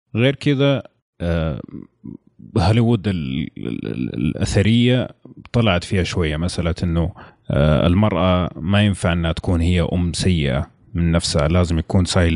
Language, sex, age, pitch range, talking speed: Arabic, male, 30-49, 85-110 Hz, 105 wpm